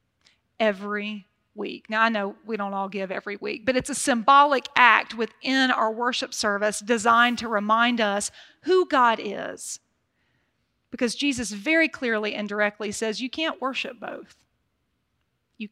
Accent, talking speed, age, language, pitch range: American, 150 wpm, 40-59, English, 215-280 Hz